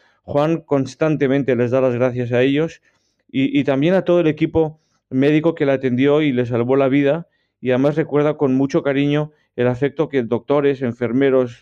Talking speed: 180 wpm